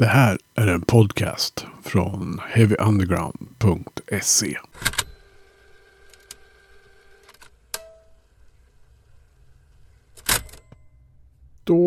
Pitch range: 110-135 Hz